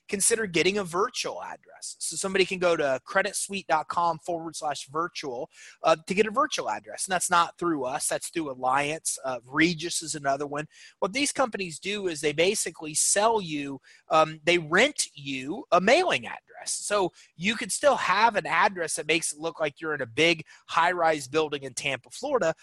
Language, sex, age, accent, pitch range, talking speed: English, male, 30-49, American, 150-200 Hz, 185 wpm